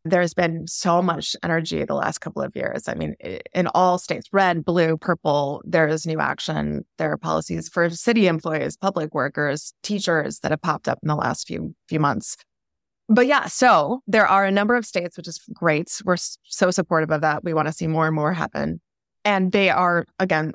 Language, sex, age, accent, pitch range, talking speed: English, female, 20-39, American, 160-190 Hz, 205 wpm